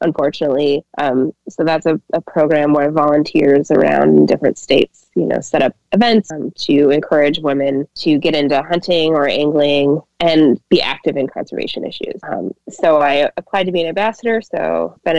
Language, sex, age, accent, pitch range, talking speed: English, female, 20-39, American, 150-185 Hz, 170 wpm